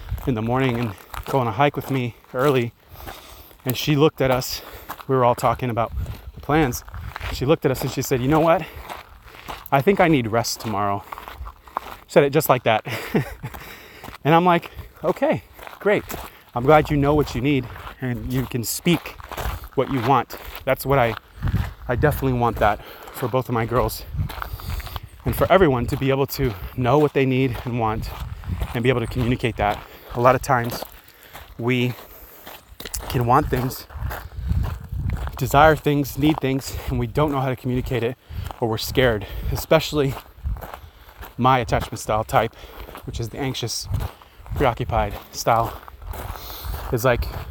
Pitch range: 105-135 Hz